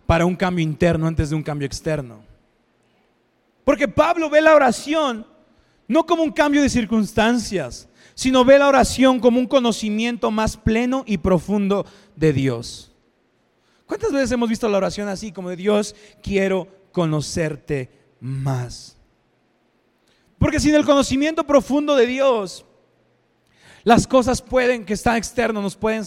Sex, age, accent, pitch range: male, 30-49, Mexican, 190-230 Hz